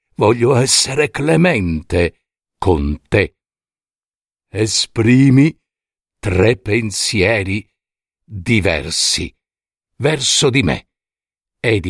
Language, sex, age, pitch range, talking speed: Italian, male, 60-79, 90-155 Hz, 65 wpm